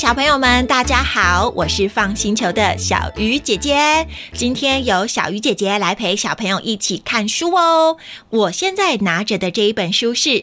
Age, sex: 30-49, female